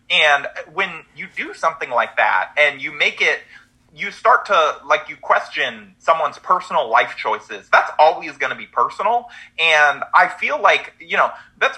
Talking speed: 175 wpm